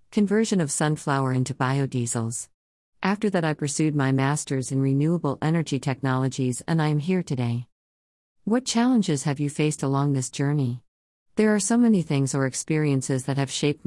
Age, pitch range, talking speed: 50-69, 130-155 Hz, 165 wpm